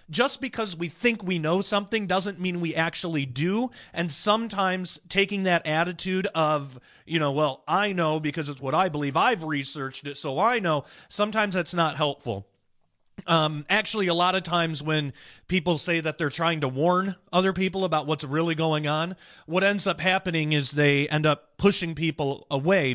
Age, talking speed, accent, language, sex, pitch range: 30-49, 185 wpm, American, English, male, 145-180 Hz